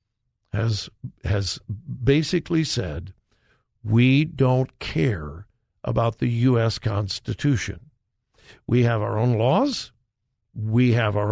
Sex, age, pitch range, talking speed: male, 60-79, 110-140 Hz, 95 wpm